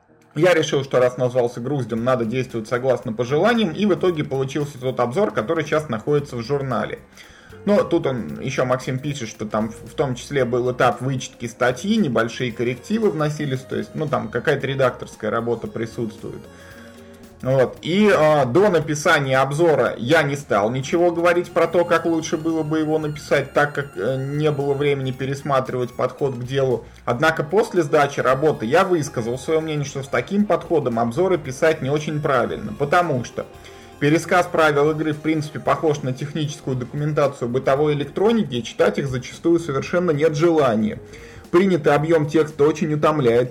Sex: male